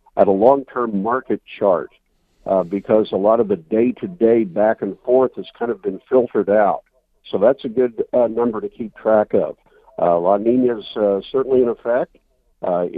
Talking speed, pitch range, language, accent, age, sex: 185 wpm, 105-120 Hz, English, American, 50-69, male